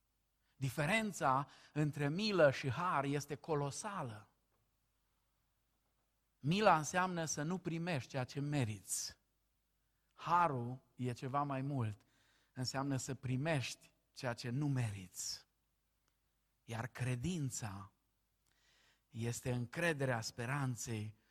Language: Romanian